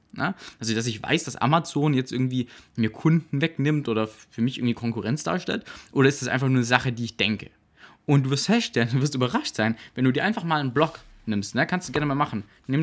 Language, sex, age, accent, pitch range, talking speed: German, male, 20-39, German, 120-150 Hz, 230 wpm